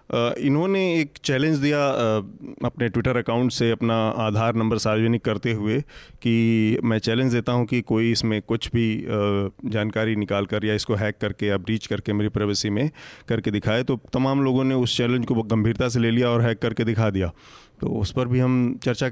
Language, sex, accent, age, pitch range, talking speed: Hindi, male, native, 30-49, 110-125 Hz, 200 wpm